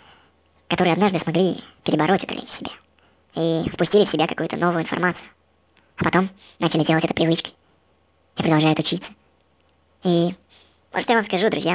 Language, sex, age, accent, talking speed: Russian, male, 20-39, native, 150 wpm